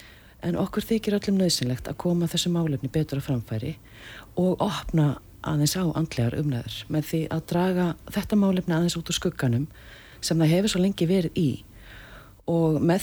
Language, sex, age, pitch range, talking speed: English, female, 40-59, 125-165 Hz, 170 wpm